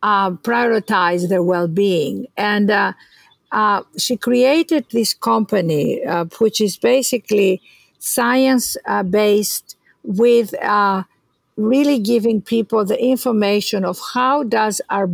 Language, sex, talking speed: English, female, 110 wpm